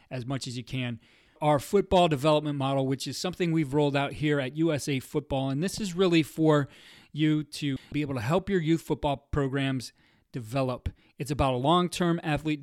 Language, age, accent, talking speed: English, 30-49, American, 190 wpm